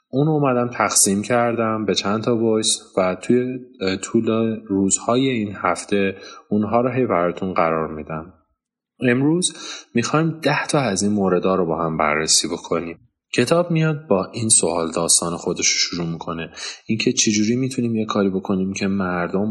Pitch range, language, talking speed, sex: 90-115 Hz, Persian, 150 wpm, male